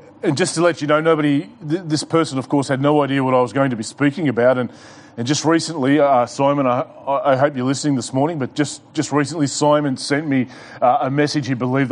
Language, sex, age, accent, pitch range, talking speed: English, male, 30-49, Australian, 130-160 Hz, 245 wpm